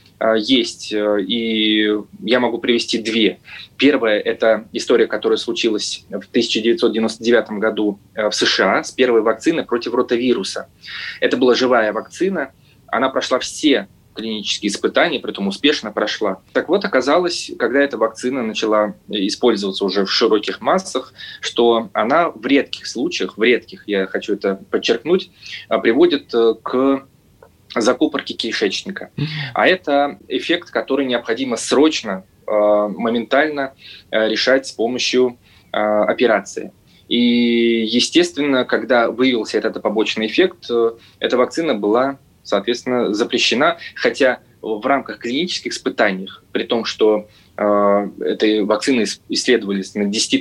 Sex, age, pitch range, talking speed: male, 20-39, 105-135 Hz, 115 wpm